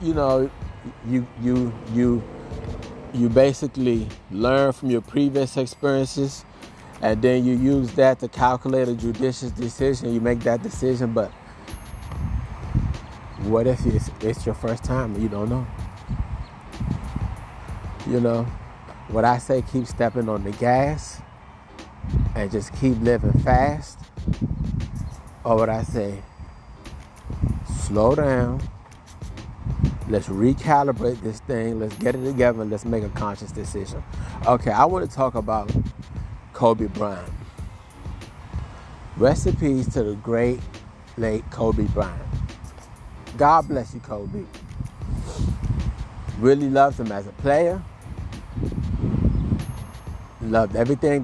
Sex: male